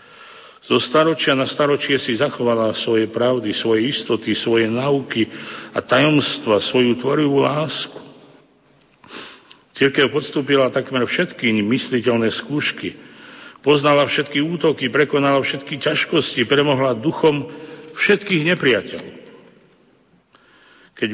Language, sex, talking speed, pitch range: Slovak, male, 100 wpm, 115-145 Hz